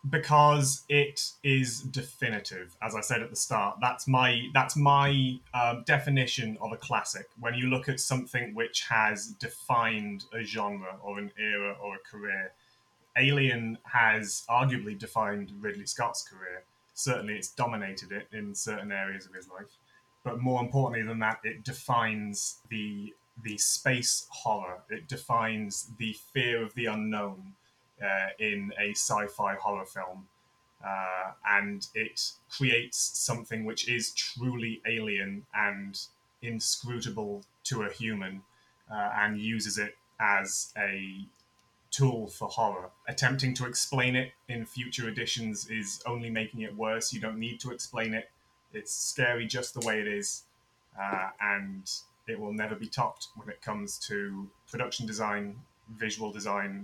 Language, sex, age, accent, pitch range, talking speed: English, male, 20-39, British, 105-125 Hz, 145 wpm